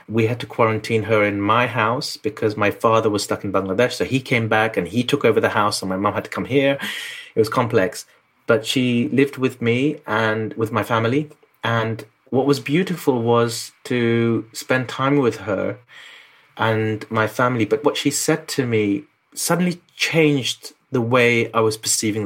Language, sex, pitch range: English, male, 110-145 Hz